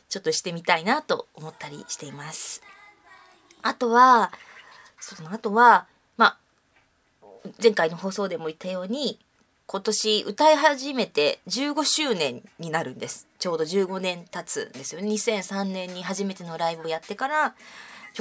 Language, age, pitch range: Japanese, 20-39, 175-240 Hz